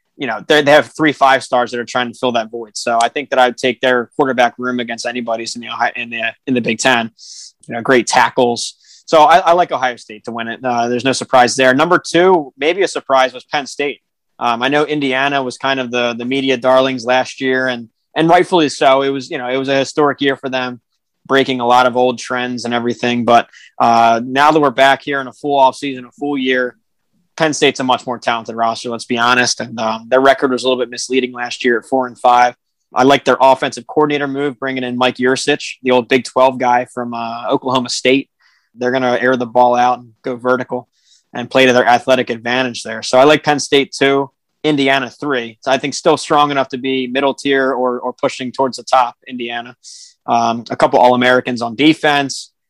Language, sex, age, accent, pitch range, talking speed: English, male, 20-39, American, 120-135 Hz, 230 wpm